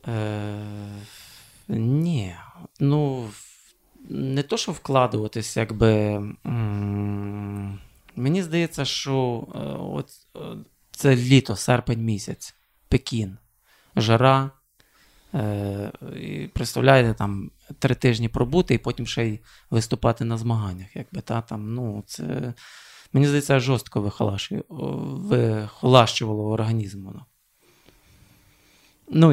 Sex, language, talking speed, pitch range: male, Ukrainian, 90 wpm, 110-140 Hz